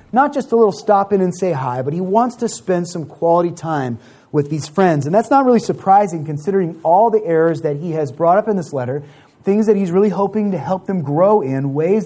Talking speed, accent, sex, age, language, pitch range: 240 wpm, American, male, 30-49, English, 145-190 Hz